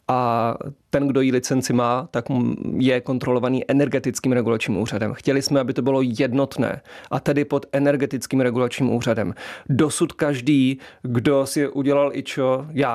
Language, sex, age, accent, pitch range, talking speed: Czech, male, 30-49, native, 125-140 Hz, 150 wpm